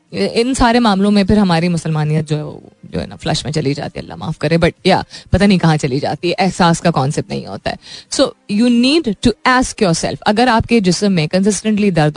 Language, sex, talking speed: Hindi, female, 215 wpm